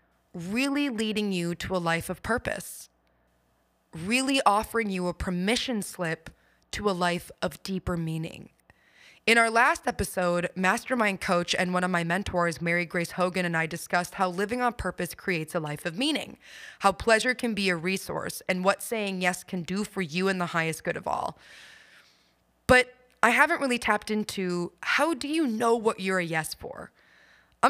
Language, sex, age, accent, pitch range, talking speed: English, female, 20-39, American, 175-225 Hz, 180 wpm